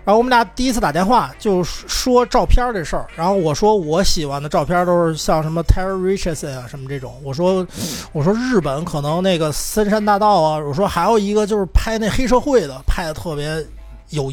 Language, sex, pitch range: Chinese, male, 160-230 Hz